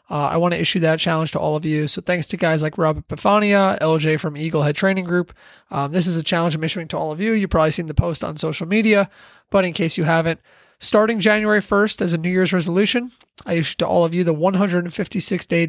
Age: 20-39